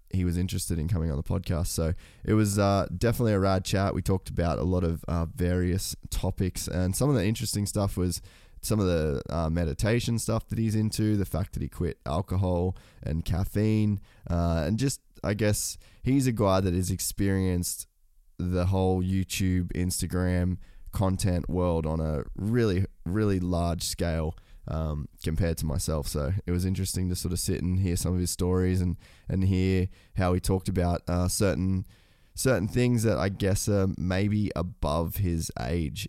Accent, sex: Australian, male